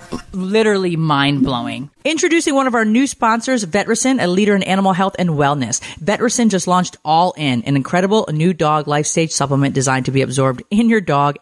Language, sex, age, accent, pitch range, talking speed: English, female, 30-49, American, 150-195 Hz, 185 wpm